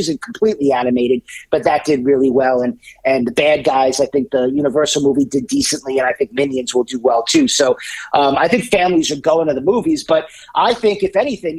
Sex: male